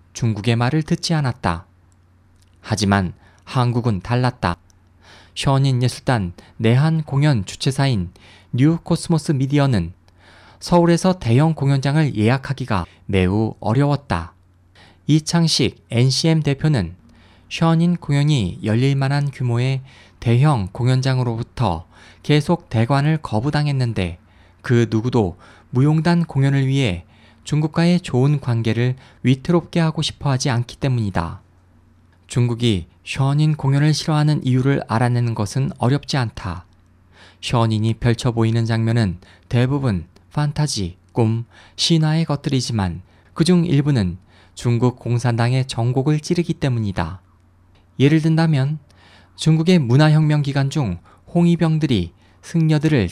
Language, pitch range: Korean, 95-145 Hz